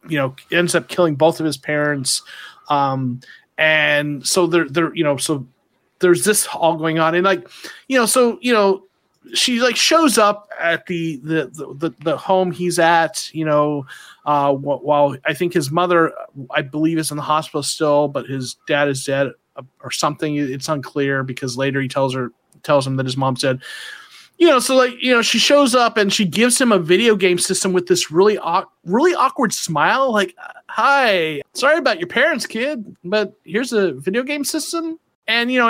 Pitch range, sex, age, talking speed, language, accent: 155-220 Hz, male, 30-49, 195 wpm, English, American